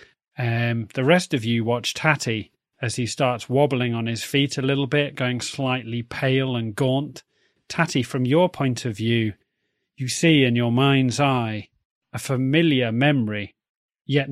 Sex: male